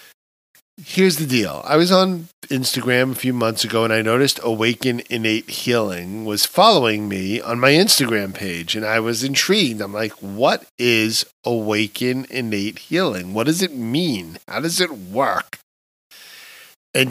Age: 40-59